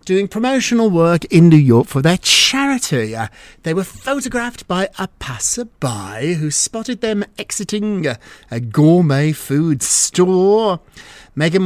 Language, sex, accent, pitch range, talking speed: English, male, British, 145-210 Hz, 125 wpm